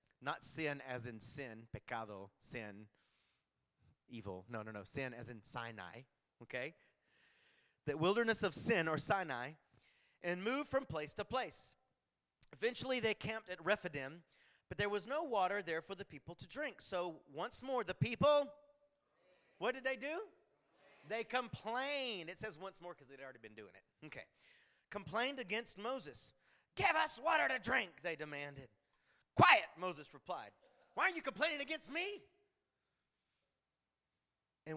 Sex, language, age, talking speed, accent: male, English, 30-49, 150 wpm, American